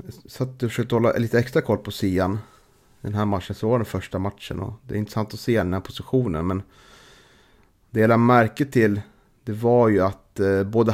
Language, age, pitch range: Swedish, 30-49, 95-120 Hz